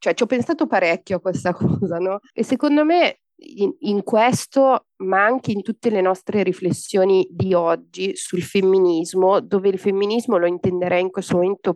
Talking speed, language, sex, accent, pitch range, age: 175 wpm, Italian, female, native, 180-205 Hz, 30-49